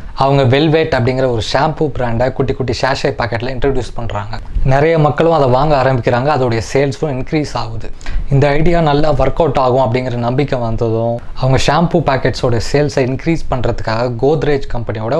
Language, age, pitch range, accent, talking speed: Tamil, 20-39, 120-145 Hz, native, 150 wpm